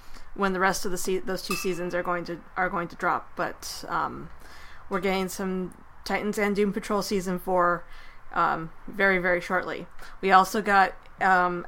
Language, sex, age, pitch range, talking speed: English, female, 20-39, 180-210 Hz, 180 wpm